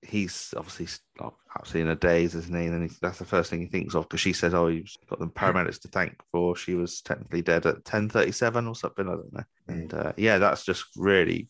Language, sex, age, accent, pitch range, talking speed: English, male, 30-49, British, 85-100 Hz, 245 wpm